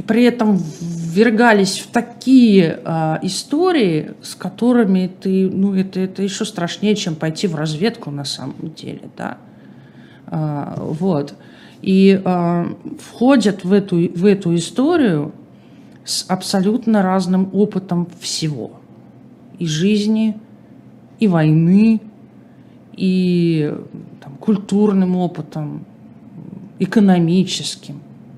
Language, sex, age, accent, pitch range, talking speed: Russian, male, 50-69, native, 170-205 Hz, 100 wpm